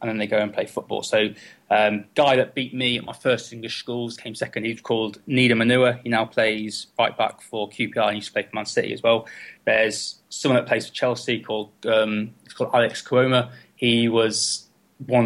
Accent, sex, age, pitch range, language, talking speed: British, male, 20-39, 110-125 Hz, English, 220 wpm